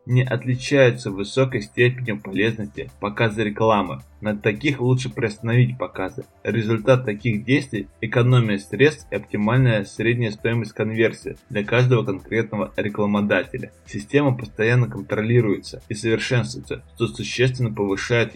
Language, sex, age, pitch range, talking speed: Russian, male, 20-39, 105-125 Hz, 110 wpm